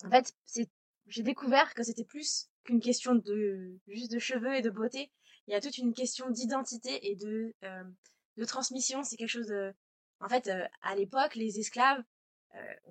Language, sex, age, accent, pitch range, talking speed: French, female, 20-39, French, 205-250 Hz, 190 wpm